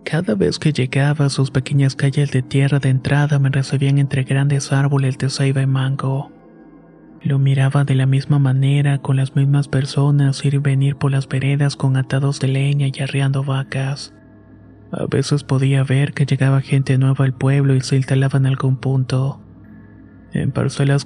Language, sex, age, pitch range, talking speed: Spanish, male, 30-49, 135-140 Hz, 175 wpm